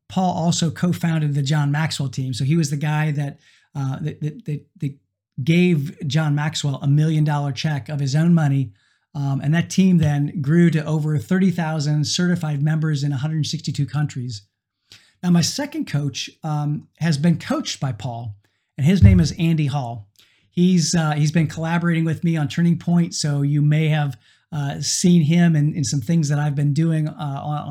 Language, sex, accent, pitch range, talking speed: English, male, American, 140-170 Hz, 180 wpm